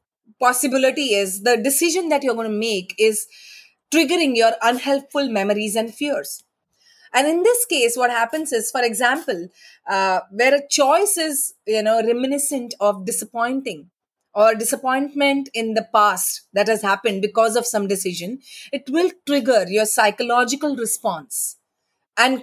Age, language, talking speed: 30-49, English, 145 wpm